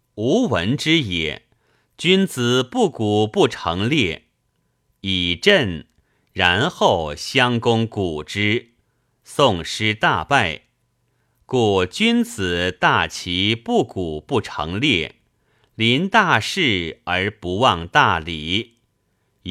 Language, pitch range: Chinese, 100-125 Hz